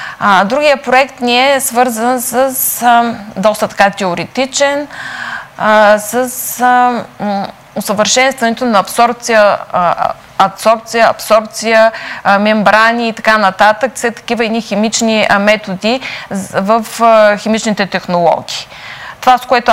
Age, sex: 20-39, female